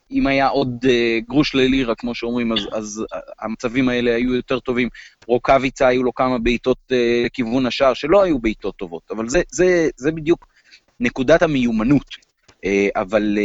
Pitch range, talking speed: 110-145 Hz, 145 wpm